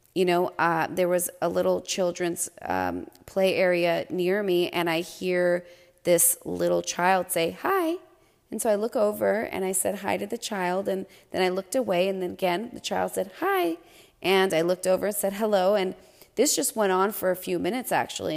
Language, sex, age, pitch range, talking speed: English, female, 30-49, 180-210 Hz, 205 wpm